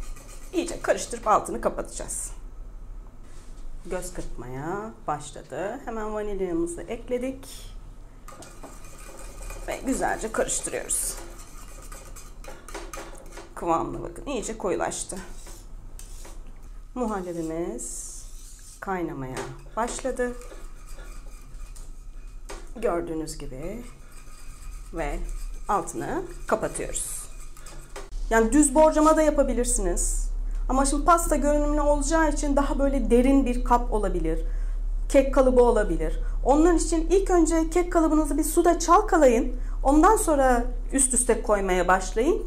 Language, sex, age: Turkish, female, 30-49